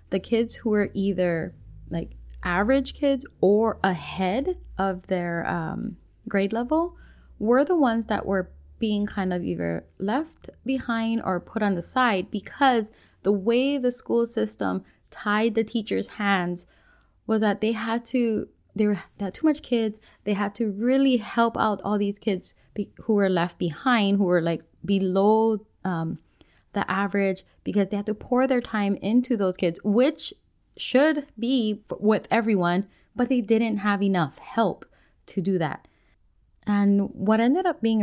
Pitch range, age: 185-230 Hz, 20-39